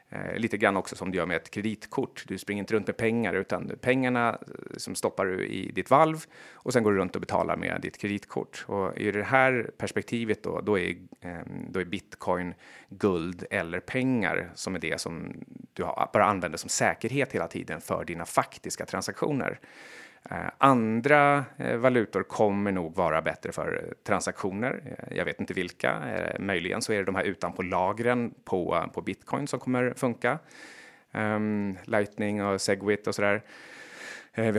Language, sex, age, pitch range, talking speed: Swedish, male, 30-49, 95-120 Hz, 165 wpm